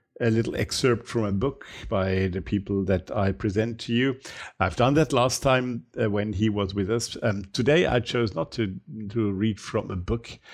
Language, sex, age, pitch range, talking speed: English, male, 50-69, 95-110 Hz, 210 wpm